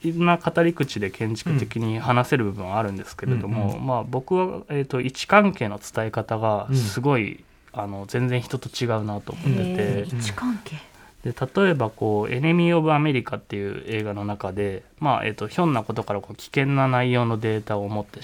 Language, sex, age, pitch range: Japanese, male, 20-39, 105-145 Hz